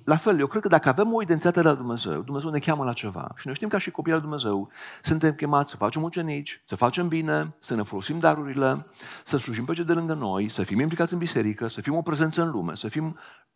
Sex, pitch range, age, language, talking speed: male, 120-170 Hz, 50-69, Romanian, 250 wpm